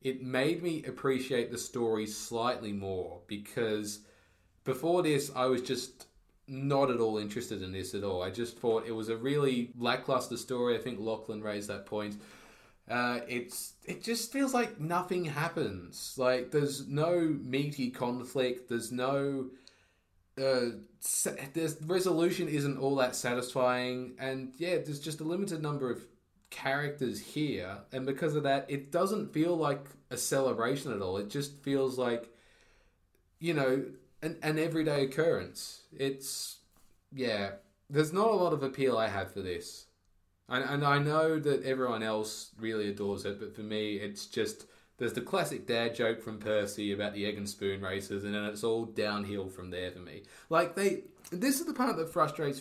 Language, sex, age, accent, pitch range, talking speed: English, male, 20-39, Australian, 110-145 Hz, 170 wpm